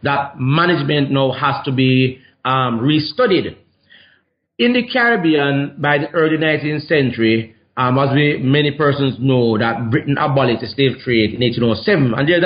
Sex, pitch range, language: male, 125-165 Hz, English